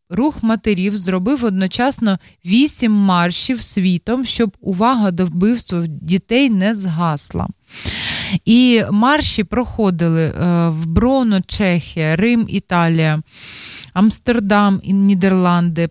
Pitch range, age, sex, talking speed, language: 175-210 Hz, 20-39, female, 90 wpm, Dutch